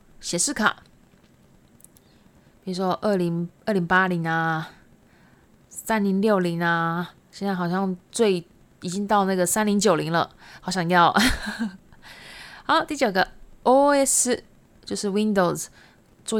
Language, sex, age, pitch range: Japanese, female, 20-39, 185-240 Hz